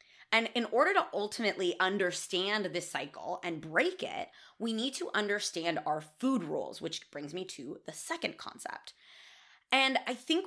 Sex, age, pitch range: female, 20-39, 165-230 Hz